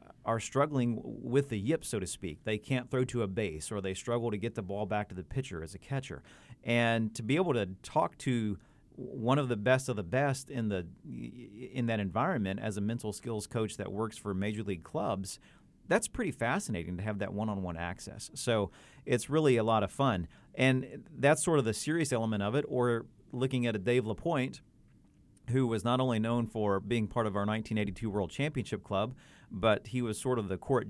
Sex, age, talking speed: male, 40-59, 215 wpm